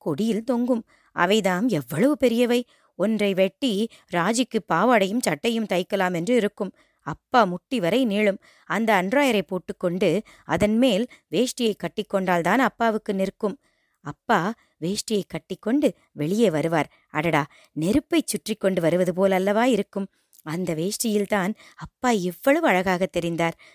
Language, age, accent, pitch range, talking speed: Tamil, 20-39, native, 180-240 Hz, 115 wpm